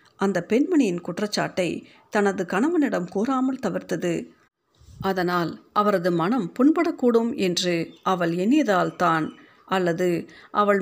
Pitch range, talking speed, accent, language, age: 180-250 Hz, 90 wpm, native, Tamil, 50-69